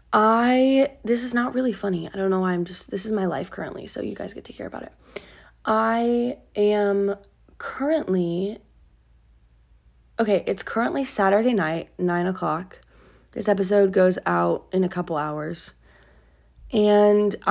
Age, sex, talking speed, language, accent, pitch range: 20-39, female, 150 wpm, English, American, 170-210 Hz